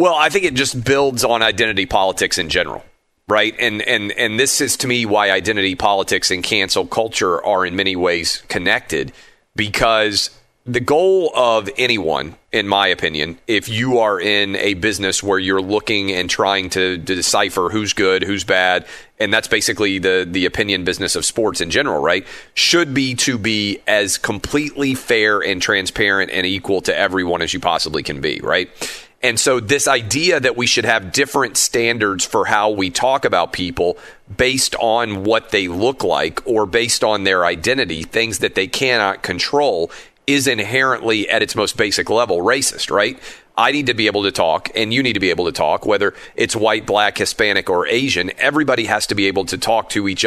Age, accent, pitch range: 40-59, American, 95-120 Hz